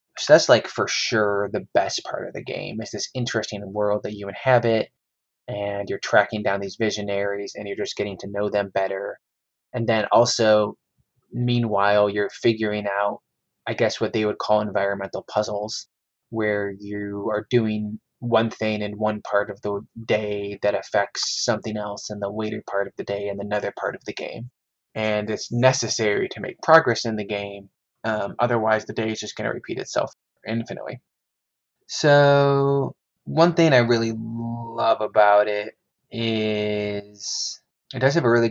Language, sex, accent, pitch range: English, male, American, 105-115 Hz